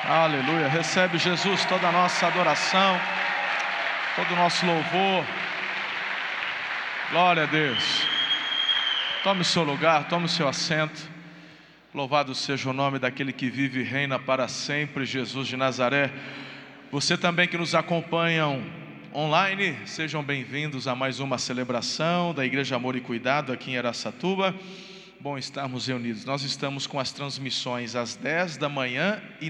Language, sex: Portuguese, male